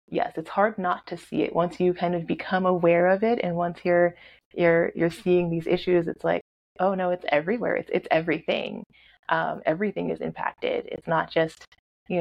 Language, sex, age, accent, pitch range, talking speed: English, female, 20-39, American, 165-190 Hz, 195 wpm